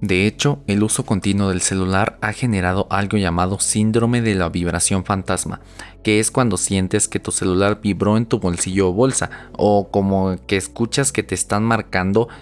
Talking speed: 180 wpm